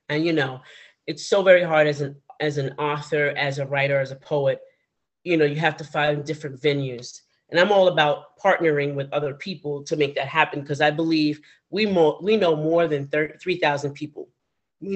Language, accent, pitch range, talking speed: English, American, 145-190 Hz, 200 wpm